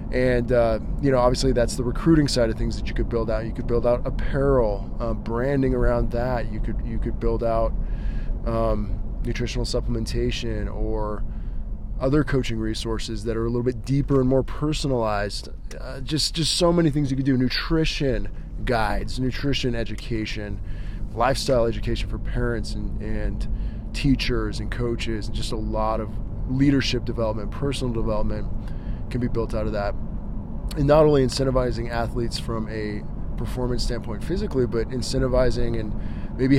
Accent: American